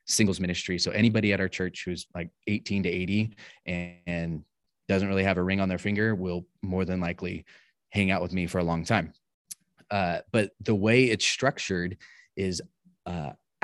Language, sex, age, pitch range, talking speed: English, male, 20-39, 90-105 Hz, 180 wpm